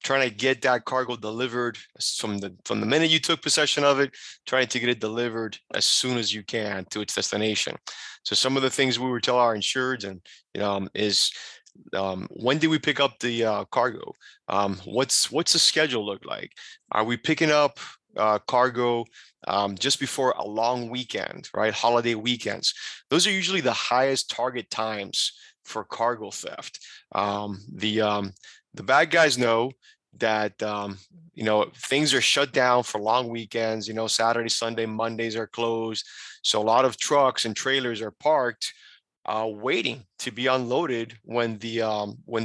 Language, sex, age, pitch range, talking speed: English, male, 30-49, 110-130 Hz, 180 wpm